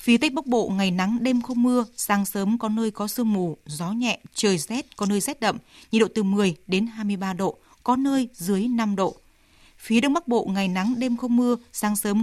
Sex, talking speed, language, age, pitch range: female, 230 wpm, Vietnamese, 20-39, 200-245 Hz